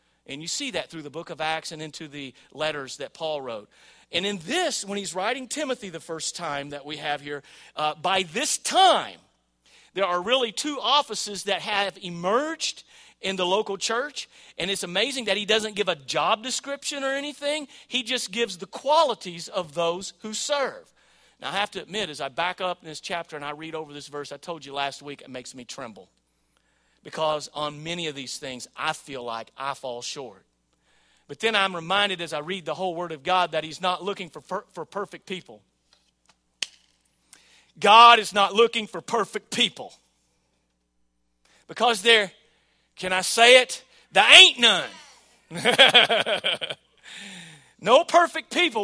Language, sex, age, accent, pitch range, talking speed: English, male, 40-59, American, 150-225 Hz, 180 wpm